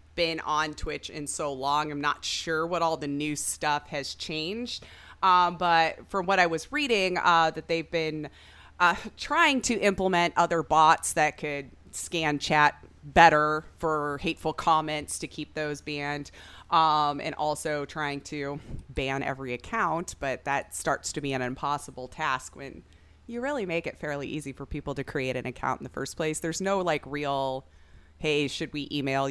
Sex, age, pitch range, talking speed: female, 30-49, 145-185 Hz, 175 wpm